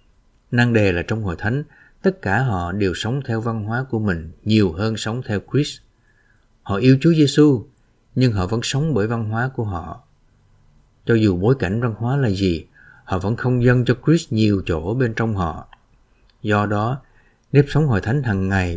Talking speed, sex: 195 wpm, male